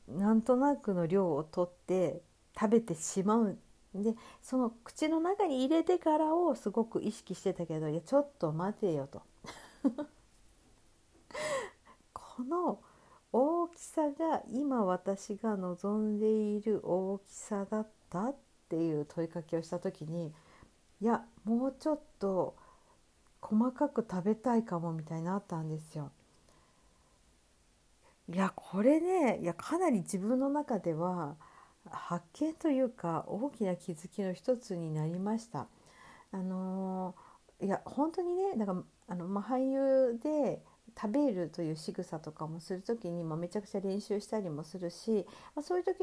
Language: Japanese